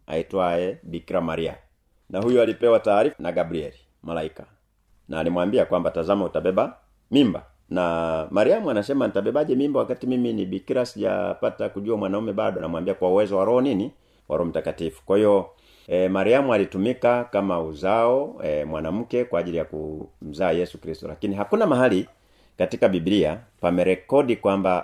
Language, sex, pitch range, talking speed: Swahili, male, 80-110 Hz, 140 wpm